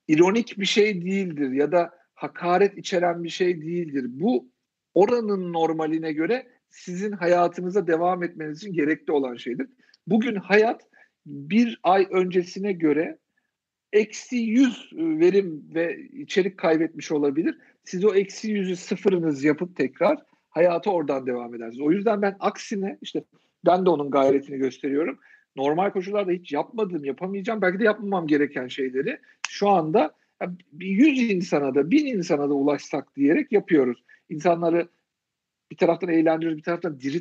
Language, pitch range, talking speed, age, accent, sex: Turkish, 150-210 Hz, 135 wpm, 50-69, native, male